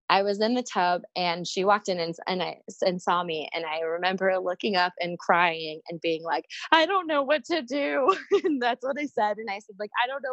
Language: English